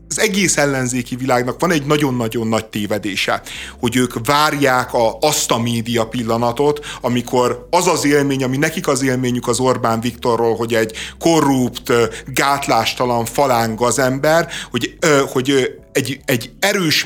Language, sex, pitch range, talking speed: Hungarian, male, 120-145 Hz, 140 wpm